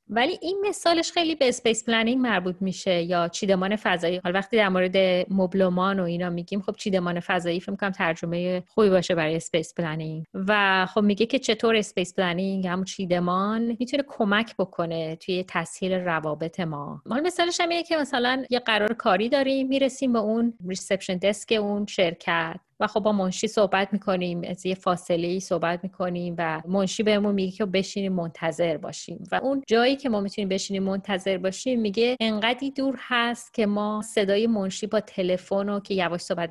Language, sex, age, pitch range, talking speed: Persian, female, 30-49, 185-225 Hz, 175 wpm